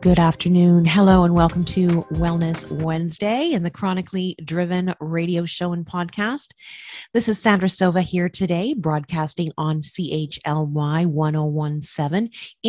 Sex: female